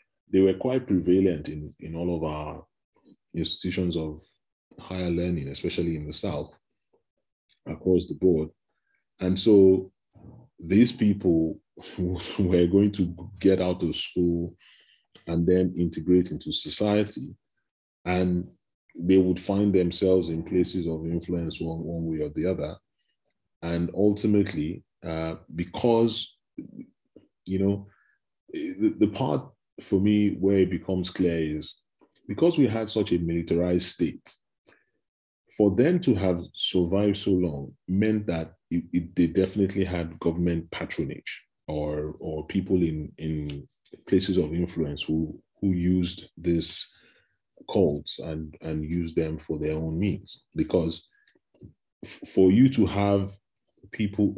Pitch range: 80-100 Hz